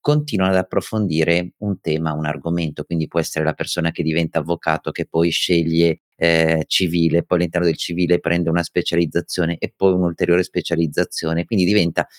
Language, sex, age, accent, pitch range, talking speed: Italian, male, 30-49, native, 85-110 Hz, 165 wpm